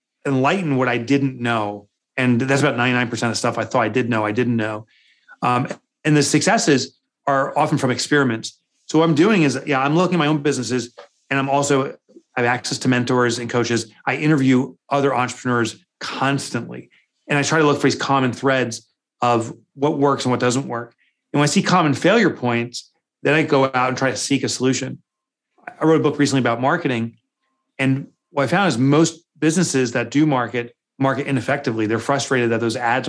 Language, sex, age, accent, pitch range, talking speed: English, male, 30-49, American, 120-145 Hz, 205 wpm